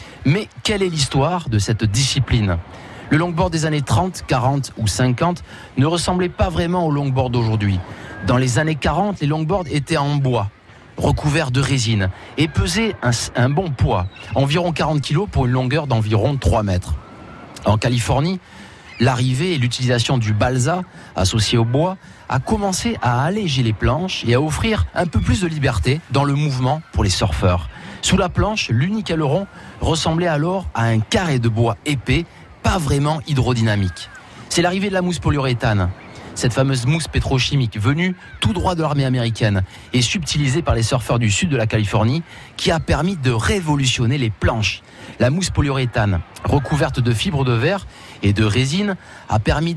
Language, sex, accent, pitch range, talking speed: French, male, French, 115-155 Hz, 170 wpm